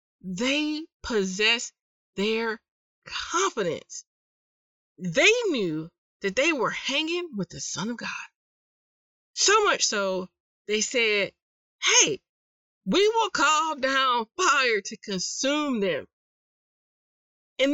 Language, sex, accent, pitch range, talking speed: English, female, American, 190-310 Hz, 100 wpm